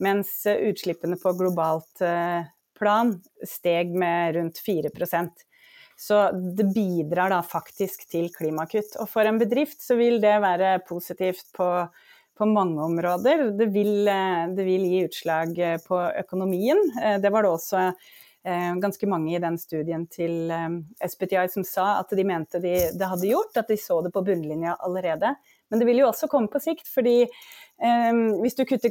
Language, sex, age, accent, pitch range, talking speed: English, female, 30-49, Swedish, 170-215 Hz, 155 wpm